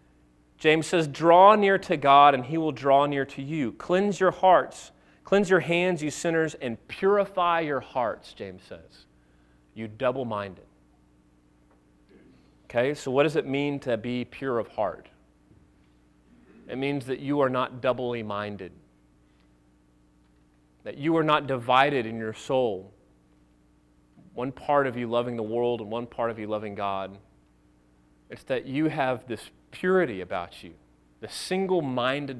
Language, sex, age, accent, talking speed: English, male, 30-49, American, 145 wpm